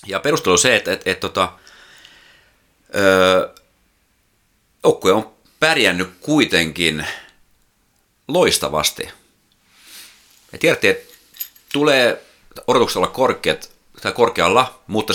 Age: 30-49